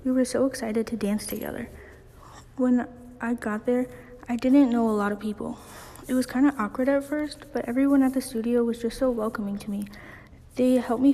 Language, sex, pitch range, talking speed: English, female, 225-255 Hz, 210 wpm